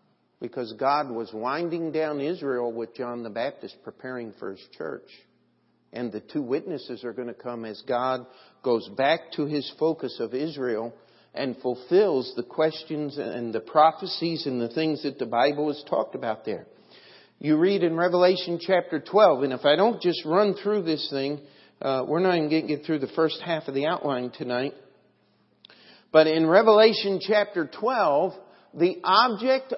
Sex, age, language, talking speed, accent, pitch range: male, 50-69, English, 170 wpm, American, 130-180 Hz